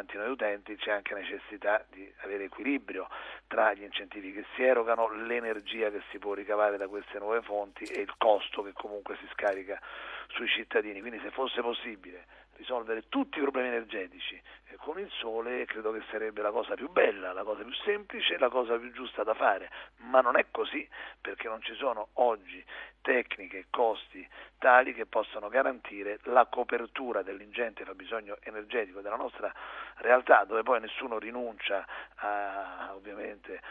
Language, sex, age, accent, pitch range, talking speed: Italian, male, 40-59, native, 105-125 Hz, 160 wpm